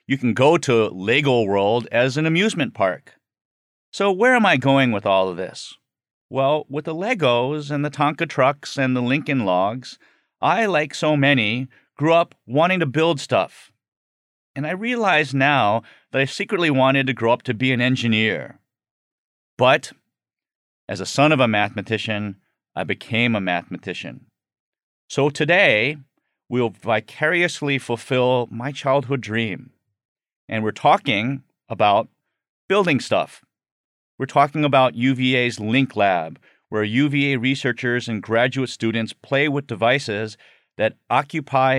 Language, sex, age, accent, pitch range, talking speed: English, male, 40-59, American, 110-140 Hz, 140 wpm